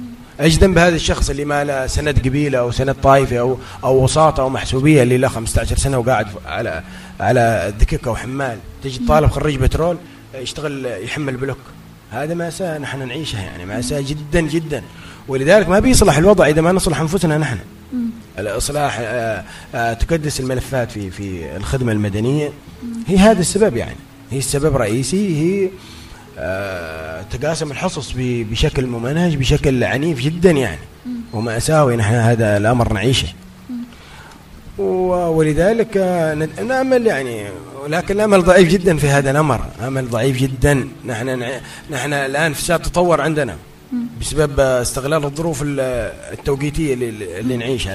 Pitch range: 120-155 Hz